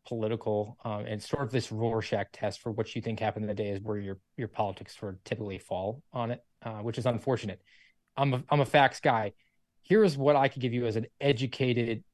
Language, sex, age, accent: English, male, 20-39, American